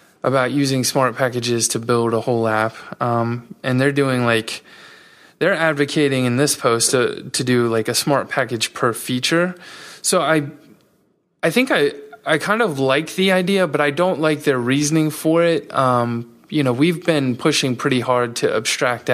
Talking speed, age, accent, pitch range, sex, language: 180 wpm, 20-39, American, 115-145 Hz, male, English